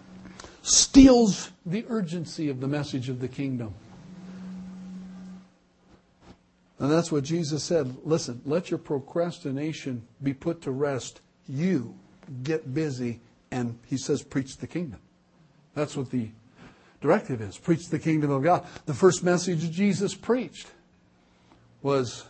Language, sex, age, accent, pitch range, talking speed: English, male, 60-79, American, 140-185 Hz, 125 wpm